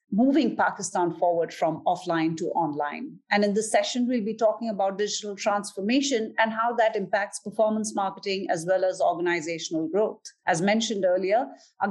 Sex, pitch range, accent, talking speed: female, 180-225 Hz, Indian, 160 wpm